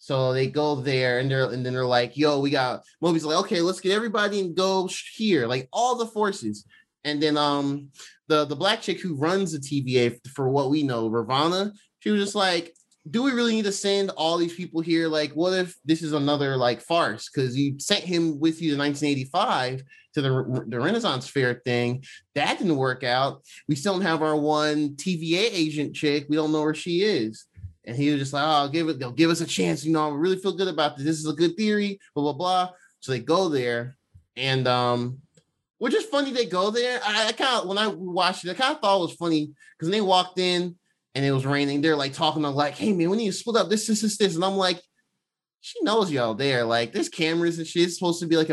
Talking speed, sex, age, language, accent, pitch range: 240 wpm, male, 20-39, English, American, 140-185 Hz